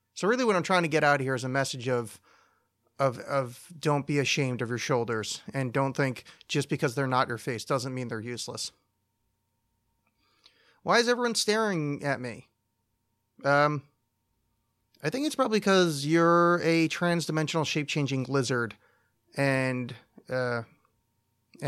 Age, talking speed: 30-49, 150 wpm